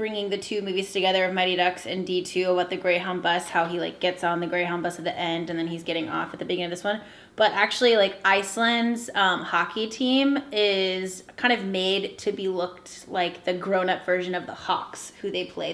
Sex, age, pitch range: female, 10-29, 180-210 Hz